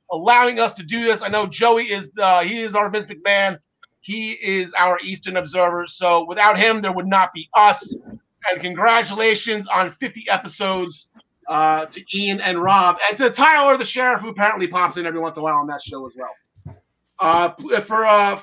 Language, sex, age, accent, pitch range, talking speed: English, male, 30-49, American, 195-285 Hz, 195 wpm